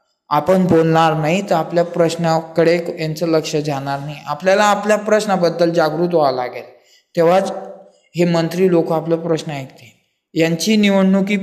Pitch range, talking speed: 160-190 Hz, 100 wpm